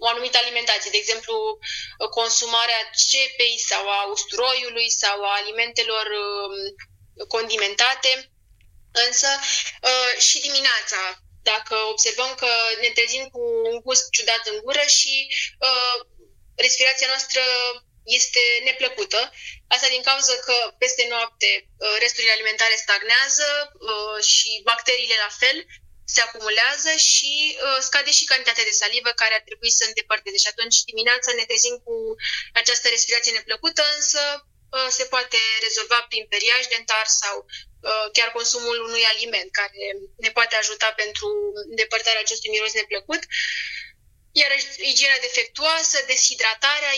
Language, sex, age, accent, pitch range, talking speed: Romanian, female, 20-39, native, 220-265 Hz, 125 wpm